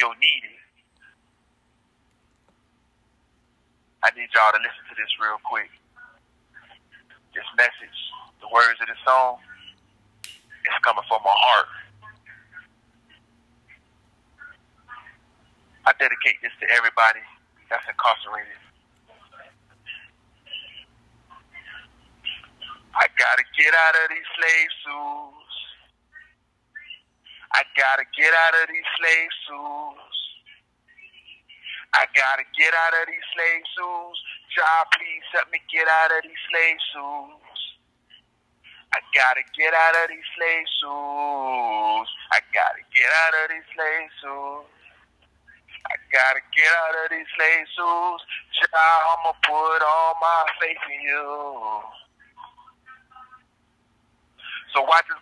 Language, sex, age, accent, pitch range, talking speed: English, male, 30-49, American, 145-175 Hz, 110 wpm